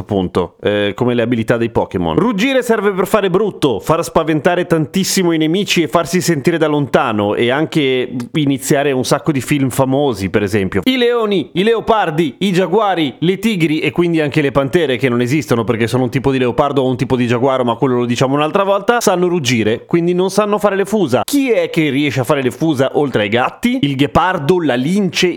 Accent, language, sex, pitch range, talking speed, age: native, Italian, male, 120-175 Hz, 210 wpm, 30-49